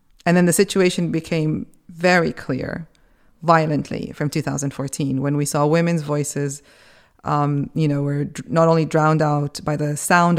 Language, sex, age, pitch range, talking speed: English, female, 20-39, 140-160 Hz, 150 wpm